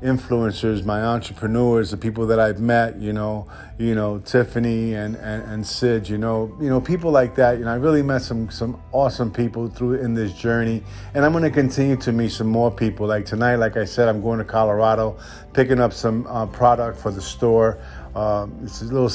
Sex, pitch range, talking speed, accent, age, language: male, 105-115 Hz, 215 wpm, American, 50-69, English